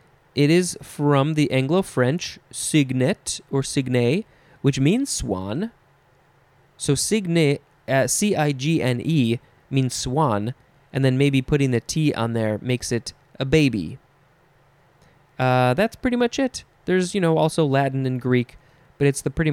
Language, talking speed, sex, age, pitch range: English, 150 wpm, male, 20-39, 130-165 Hz